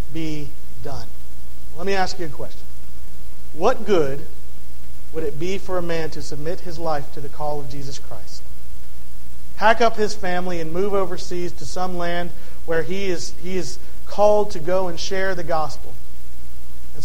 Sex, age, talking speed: male, 40-59, 175 wpm